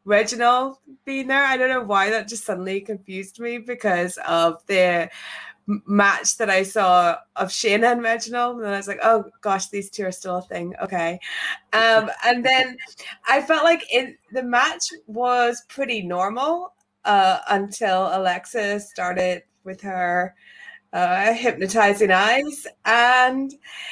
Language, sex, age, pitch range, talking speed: English, female, 20-39, 200-240 Hz, 145 wpm